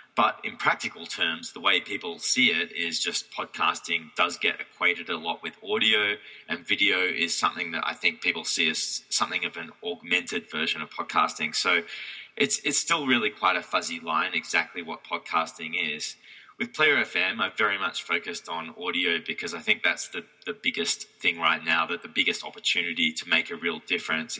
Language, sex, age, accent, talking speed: English, male, 20-39, Australian, 190 wpm